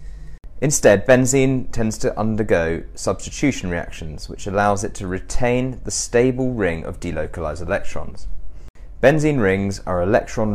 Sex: male